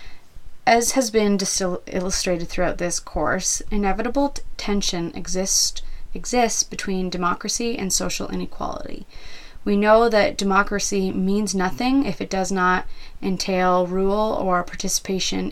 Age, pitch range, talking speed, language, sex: 20-39, 180-210 Hz, 115 wpm, English, female